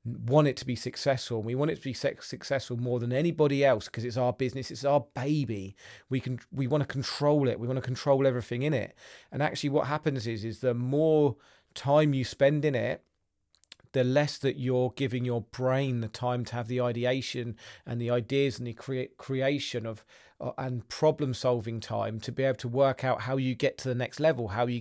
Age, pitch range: 40-59, 115-135 Hz